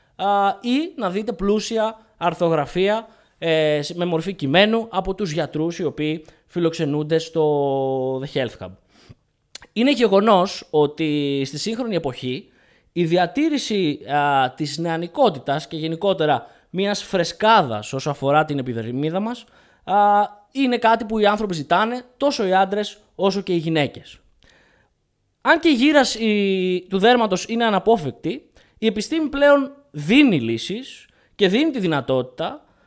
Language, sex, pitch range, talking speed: Greek, male, 155-225 Hz, 120 wpm